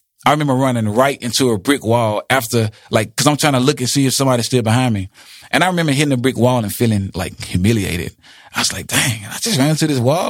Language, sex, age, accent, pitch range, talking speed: English, male, 30-49, American, 115-150 Hz, 250 wpm